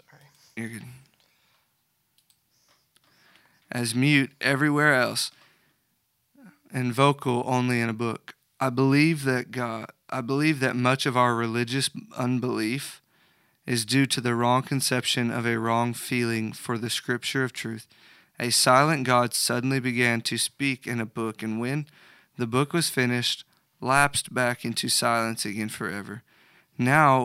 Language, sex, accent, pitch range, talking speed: English, male, American, 115-130 Hz, 130 wpm